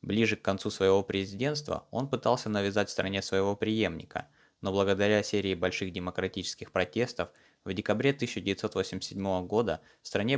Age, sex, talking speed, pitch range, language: 20-39, male, 135 wpm, 95-110 Hz, Russian